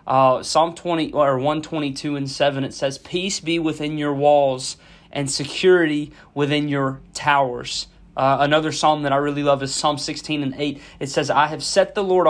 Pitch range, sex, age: 135-165 Hz, male, 30-49